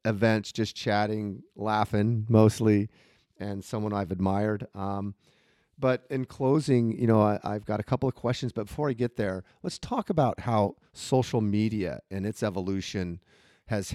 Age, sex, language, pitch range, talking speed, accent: 40-59, male, English, 95-115 Hz, 155 wpm, American